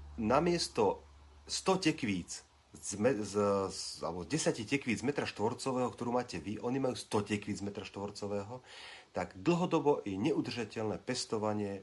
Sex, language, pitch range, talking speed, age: male, Slovak, 100-140 Hz, 135 wpm, 40-59